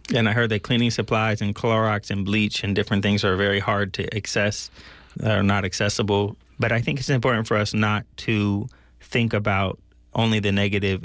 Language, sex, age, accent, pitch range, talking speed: English, male, 30-49, American, 100-110 Hz, 190 wpm